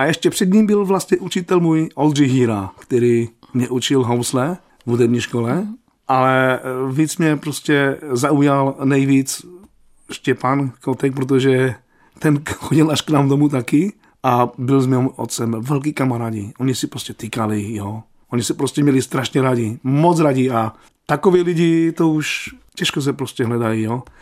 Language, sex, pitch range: Czech, male, 120-160 Hz